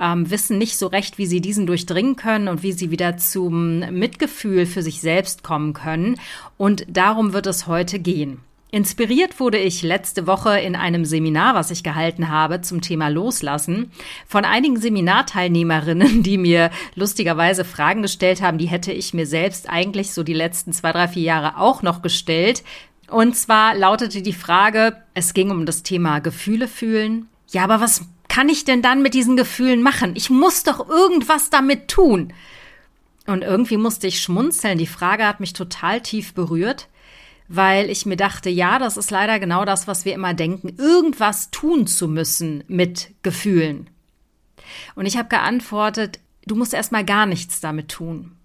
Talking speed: 170 wpm